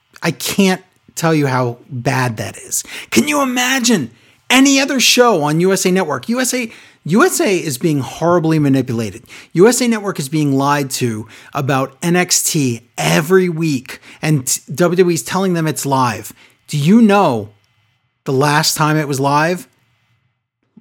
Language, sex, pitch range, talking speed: English, male, 130-185 Hz, 140 wpm